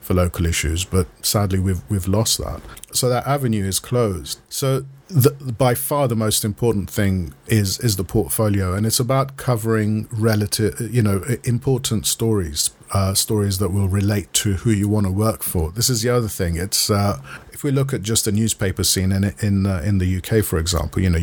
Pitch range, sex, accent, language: 90-110 Hz, male, British, English